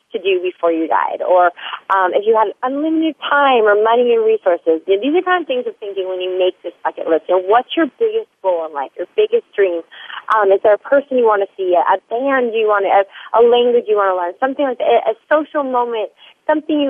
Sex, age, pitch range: female, 30-49, 195-275 Hz